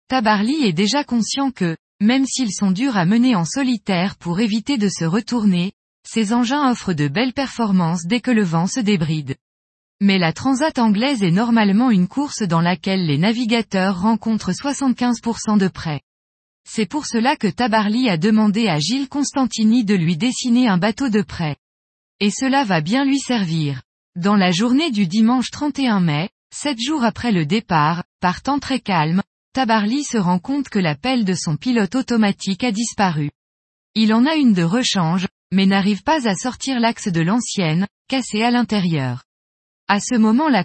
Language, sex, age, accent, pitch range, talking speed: French, female, 20-39, French, 180-245 Hz, 175 wpm